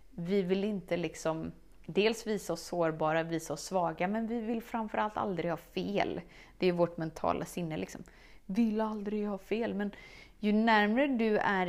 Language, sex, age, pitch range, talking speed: Swedish, female, 30-49, 170-210 Hz, 175 wpm